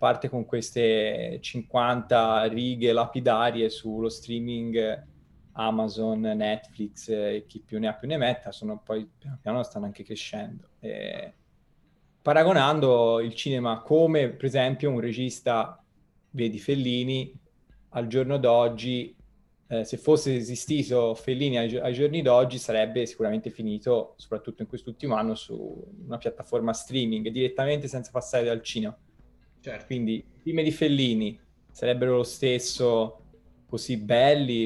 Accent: native